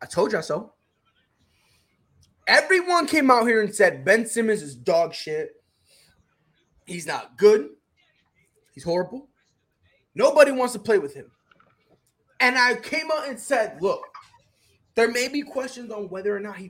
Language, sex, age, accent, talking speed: English, male, 20-39, American, 150 wpm